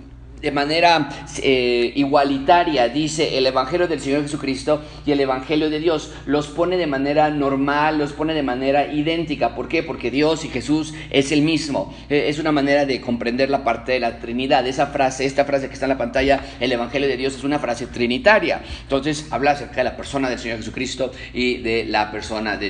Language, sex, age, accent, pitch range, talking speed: Spanish, male, 30-49, Mexican, 140-195 Hz, 200 wpm